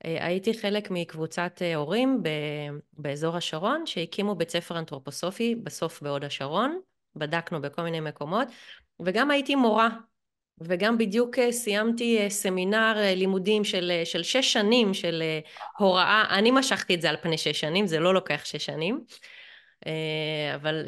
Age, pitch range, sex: 30-49, 165-220 Hz, female